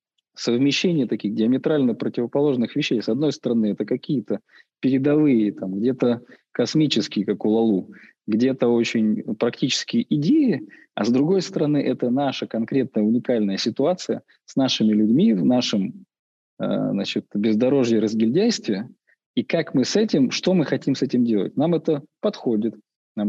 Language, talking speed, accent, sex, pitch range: Russian, 135 wpm, native, male, 115-155 Hz